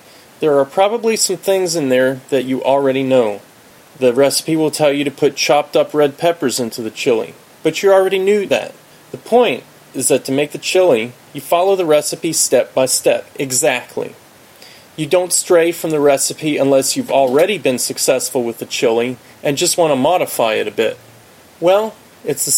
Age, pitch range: 30-49, 130-175 Hz